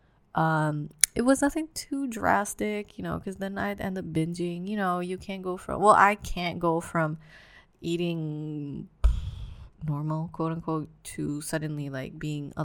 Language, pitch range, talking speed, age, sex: English, 155-190 Hz, 160 wpm, 20-39, female